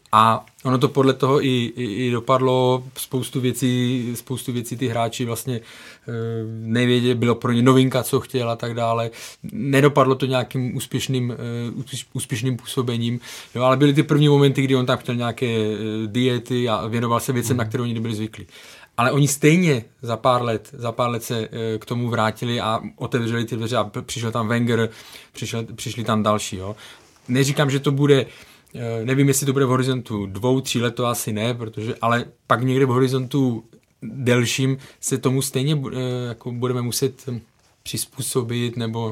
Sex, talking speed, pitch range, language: male, 170 wpm, 115-135 Hz, Czech